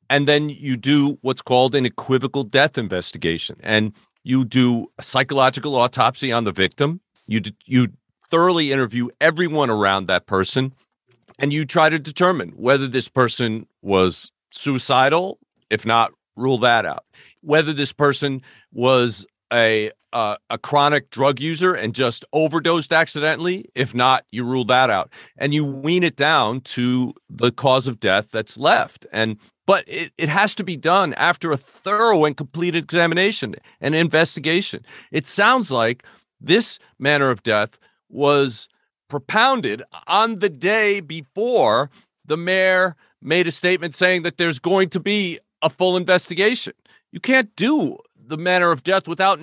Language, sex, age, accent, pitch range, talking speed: English, male, 40-59, American, 125-180 Hz, 155 wpm